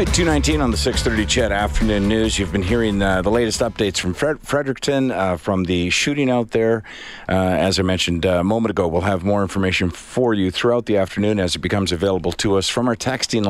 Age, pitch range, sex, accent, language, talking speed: 50-69, 90-110 Hz, male, American, English, 210 wpm